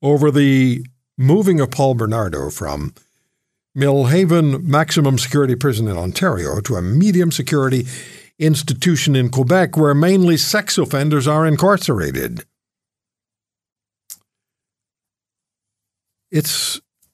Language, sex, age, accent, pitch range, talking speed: English, male, 60-79, American, 110-155 Hz, 90 wpm